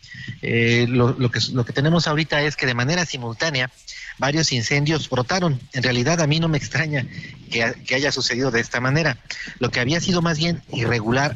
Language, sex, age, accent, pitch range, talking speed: Spanish, male, 40-59, Mexican, 120-150 Hz, 185 wpm